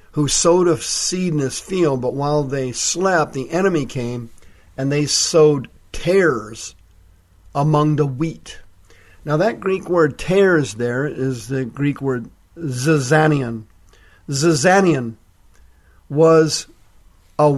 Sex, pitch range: male, 90-155 Hz